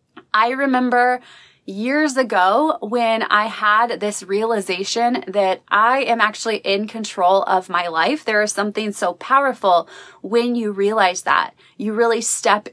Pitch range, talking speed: 190-235 Hz, 140 wpm